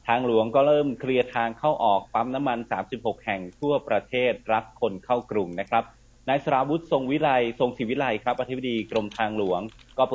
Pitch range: 105-125 Hz